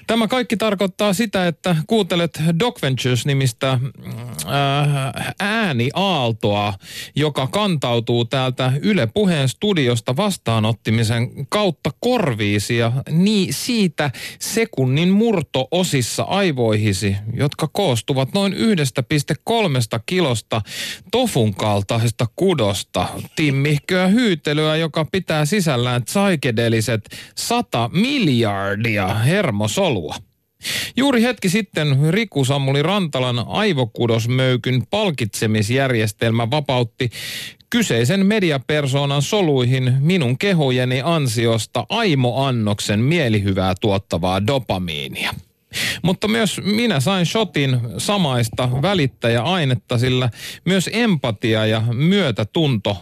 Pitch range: 115-185 Hz